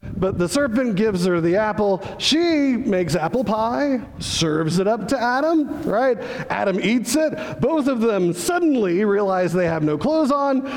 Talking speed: 165 wpm